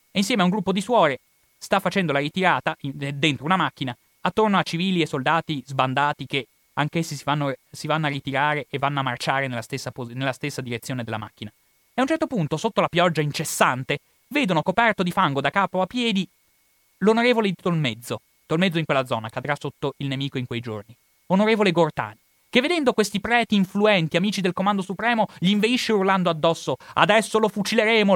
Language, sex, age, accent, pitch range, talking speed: Italian, male, 30-49, native, 135-190 Hz, 190 wpm